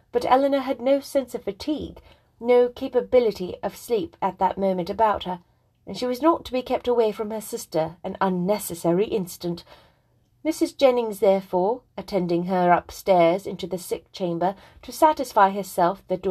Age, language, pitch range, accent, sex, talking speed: 30-49, English, 185-235 Hz, British, female, 160 wpm